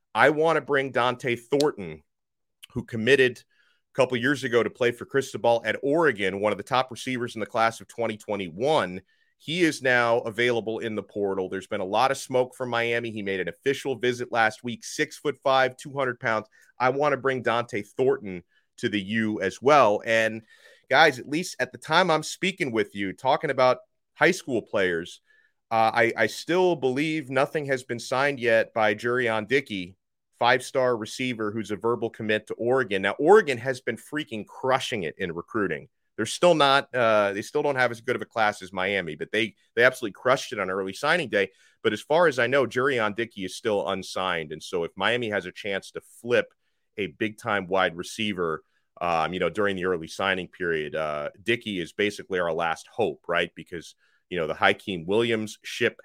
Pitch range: 105-135 Hz